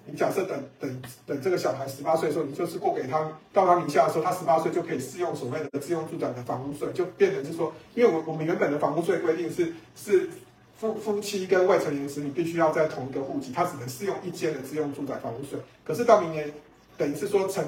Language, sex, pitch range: Chinese, male, 140-185 Hz